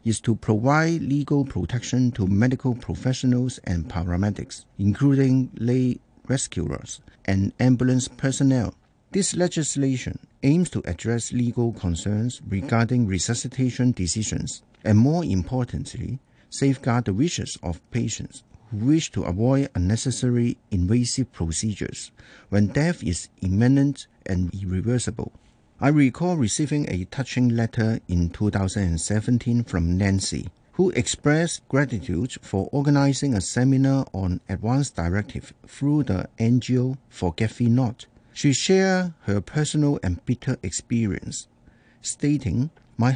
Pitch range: 100-135 Hz